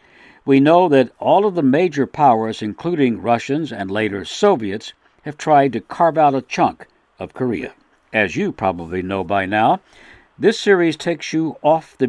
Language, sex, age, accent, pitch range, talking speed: English, male, 60-79, American, 105-150 Hz, 170 wpm